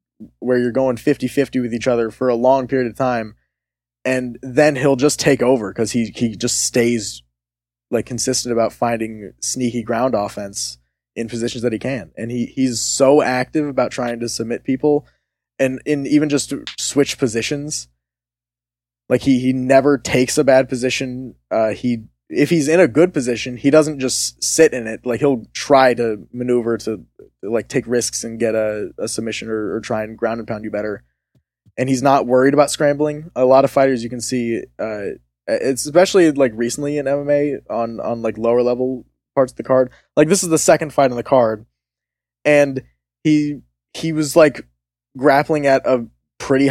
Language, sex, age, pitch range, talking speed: English, male, 20-39, 110-140 Hz, 185 wpm